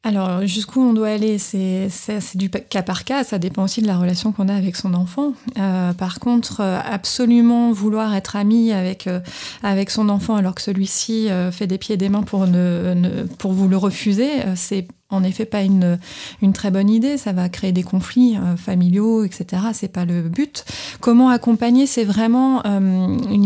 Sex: female